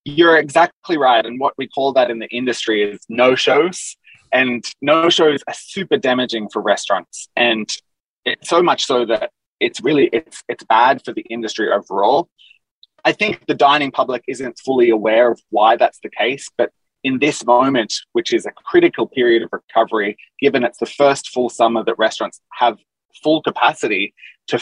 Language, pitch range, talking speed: English, 115-155 Hz, 175 wpm